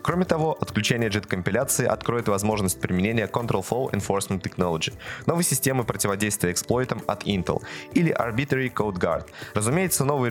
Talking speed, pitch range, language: 135 wpm, 95-140 Hz, Russian